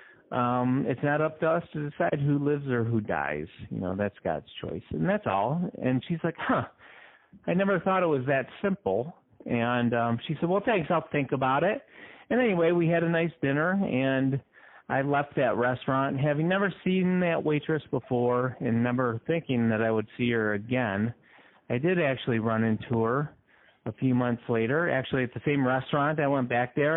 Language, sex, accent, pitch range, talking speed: English, male, American, 120-165 Hz, 195 wpm